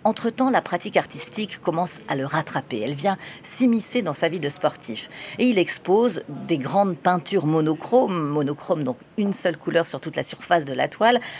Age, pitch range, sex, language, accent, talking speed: 40-59, 150-200 Hz, female, French, French, 185 wpm